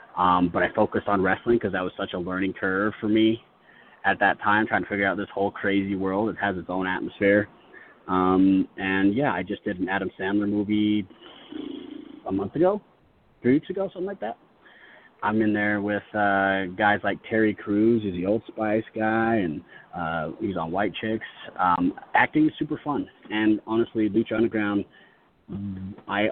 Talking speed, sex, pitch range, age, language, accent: 180 wpm, male, 95-110 Hz, 30-49, English, American